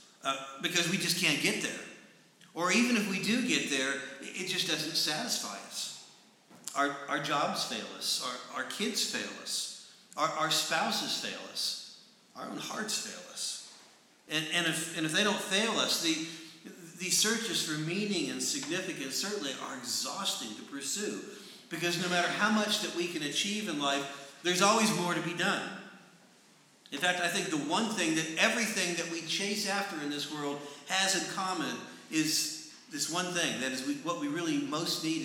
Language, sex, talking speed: English, male, 185 wpm